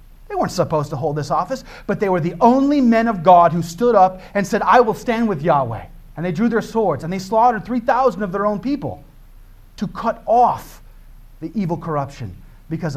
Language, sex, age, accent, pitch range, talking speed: English, male, 40-59, American, 110-170 Hz, 210 wpm